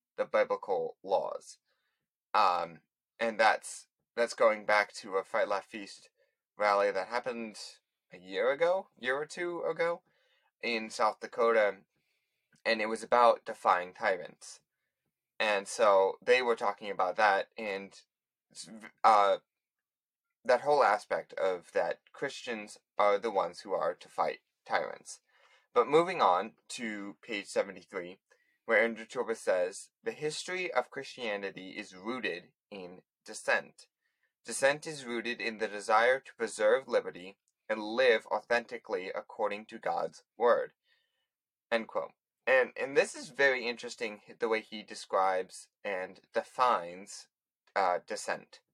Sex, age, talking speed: male, 20-39, 130 wpm